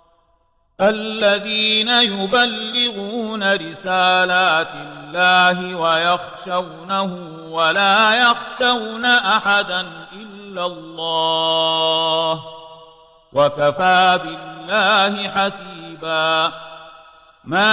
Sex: male